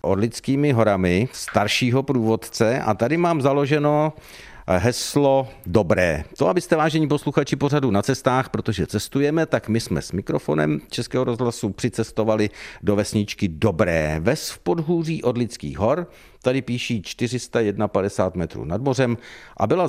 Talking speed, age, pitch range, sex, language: 130 wpm, 50-69, 95-125 Hz, male, Czech